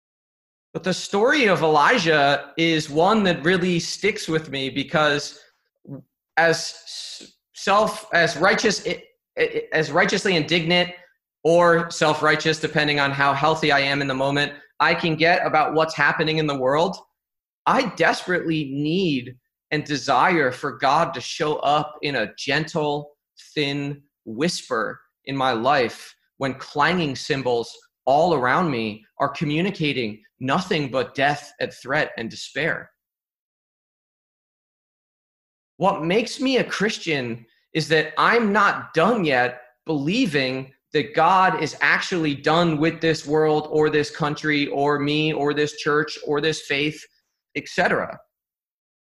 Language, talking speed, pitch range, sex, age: English, 130 wpm, 145-170 Hz, male, 30-49